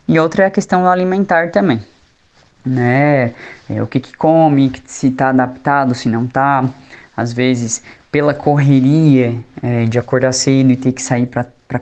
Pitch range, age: 130-155 Hz, 20-39